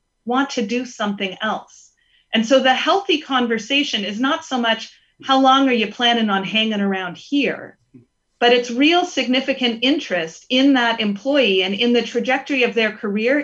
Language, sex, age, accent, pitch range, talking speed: English, female, 40-59, American, 215-275 Hz, 170 wpm